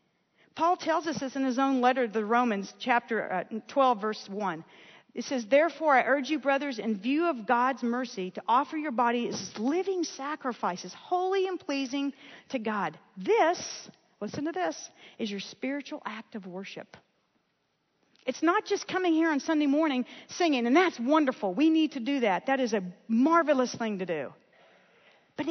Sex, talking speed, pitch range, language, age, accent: female, 170 wpm, 210-305 Hz, English, 50-69, American